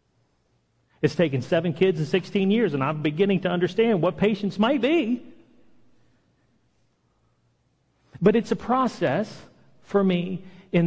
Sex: male